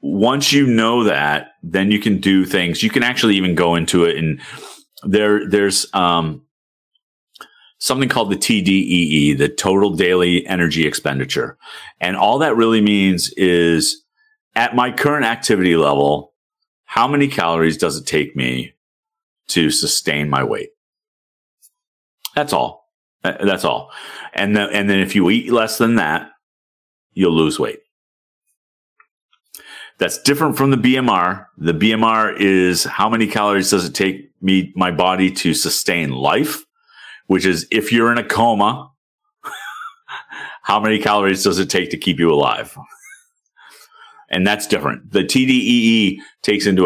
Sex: male